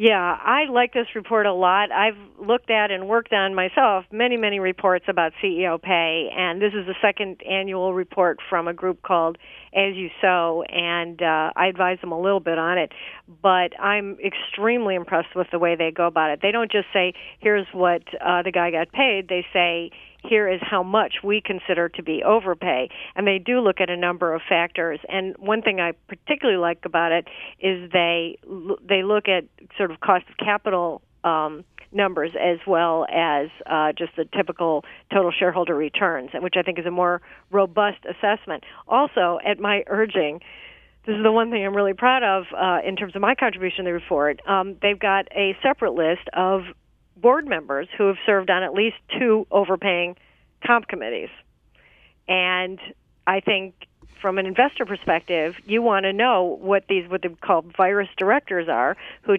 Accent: American